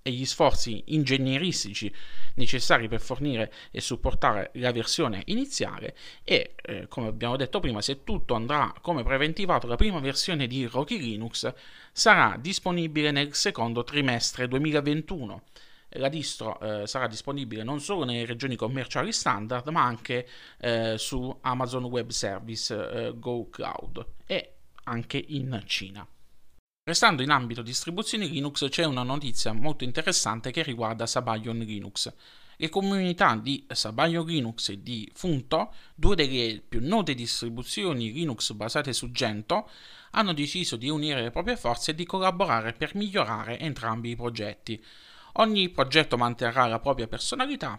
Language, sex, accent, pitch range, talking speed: Italian, male, native, 115-155 Hz, 140 wpm